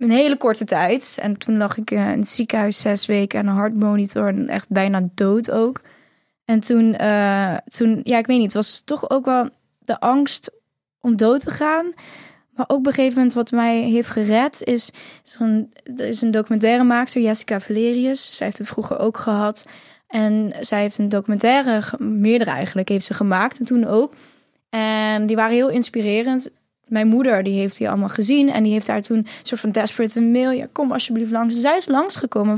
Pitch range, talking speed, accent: 220-260 Hz, 200 wpm, Dutch